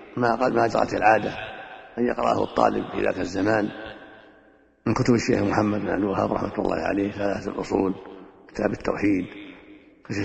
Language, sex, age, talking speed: Arabic, male, 50-69, 145 wpm